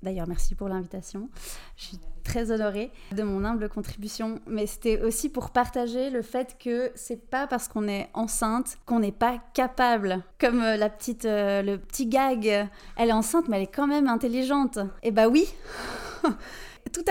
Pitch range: 195-245 Hz